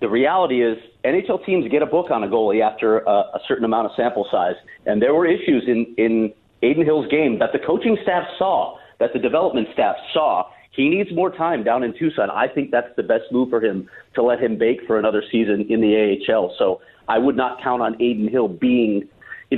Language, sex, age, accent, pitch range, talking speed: English, male, 40-59, American, 110-150 Hz, 225 wpm